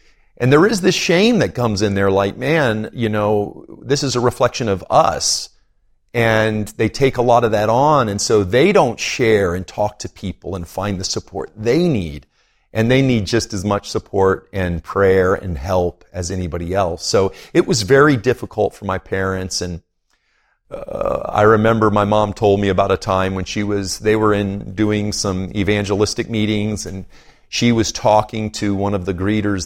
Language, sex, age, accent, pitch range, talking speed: English, male, 40-59, American, 95-115 Hz, 190 wpm